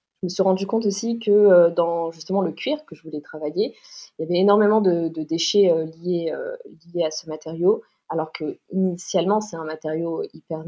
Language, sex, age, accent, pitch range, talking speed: French, female, 20-39, French, 165-200 Hz, 210 wpm